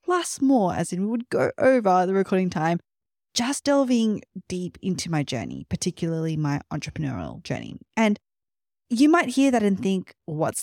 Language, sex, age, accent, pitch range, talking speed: English, female, 20-39, Australian, 160-250 Hz, 165 wpm